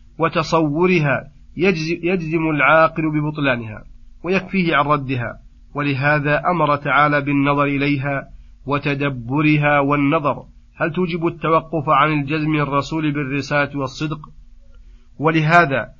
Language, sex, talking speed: Arabic, male, 85 wpm